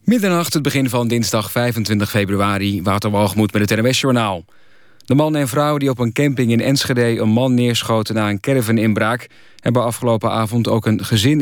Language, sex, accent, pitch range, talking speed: Dutch, male, Dutch, 110-130 Hz, 185 wpm